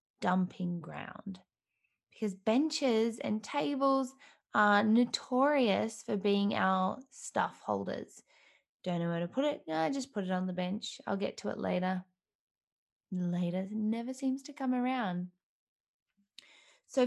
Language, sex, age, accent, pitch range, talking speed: English, female, 20-39, Australian, 190-245 Hz, 135 wpm